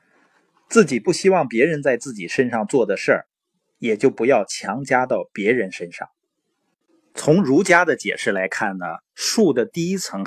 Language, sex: Chinese, male